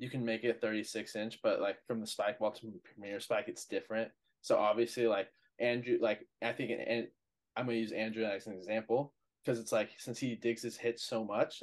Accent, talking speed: American, 220 wpm